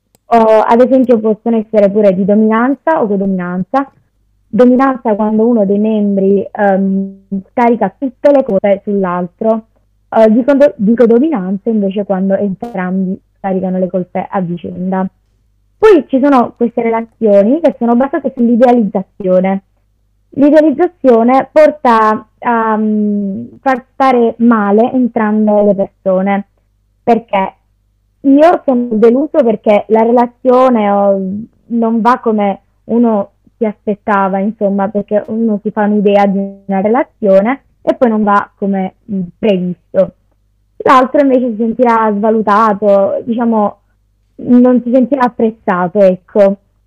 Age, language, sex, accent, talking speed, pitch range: 20-39, Italian, female, native, 115 wpm, 195-245 Hz